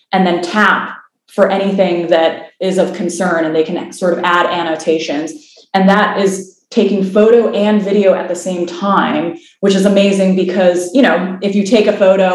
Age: 20-39